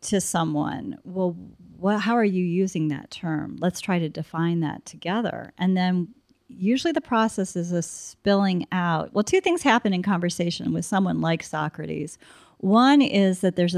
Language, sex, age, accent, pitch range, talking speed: English, female, 40-59, American, 160-200 Hz, 170 wpm